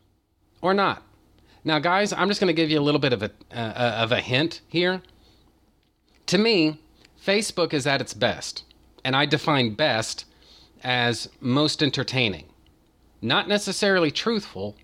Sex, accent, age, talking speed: male, American, 40-59, 150 wpm